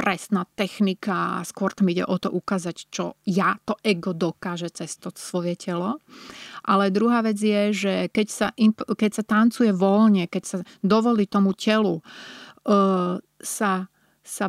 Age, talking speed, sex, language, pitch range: 30-49, 155 wpm, female, Slovak, 185-215 Hz